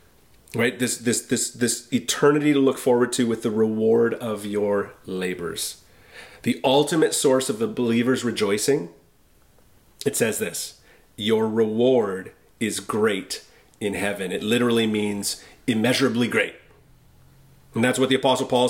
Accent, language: American, English